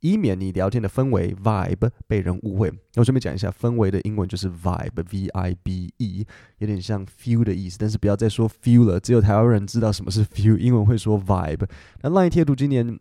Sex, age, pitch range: male, 20-39, 95-120 Hz